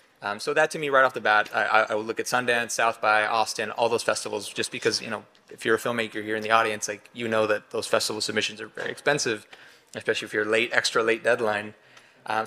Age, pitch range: 20-39, 110-135 Hz